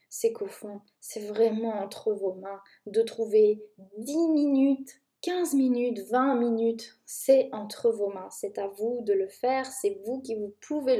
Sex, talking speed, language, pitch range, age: female, 170 wpm, French, 205-270 Hz, 20-39